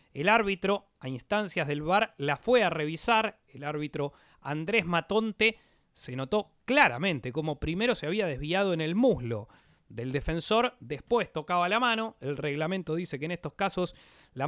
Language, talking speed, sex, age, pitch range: Spanish, 160 wpm, male, 30-49, 150-200 Hz